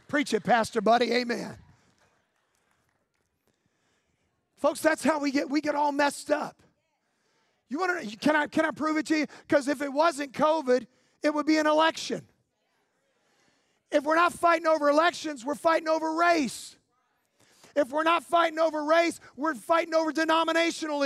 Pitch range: 280-320 Hz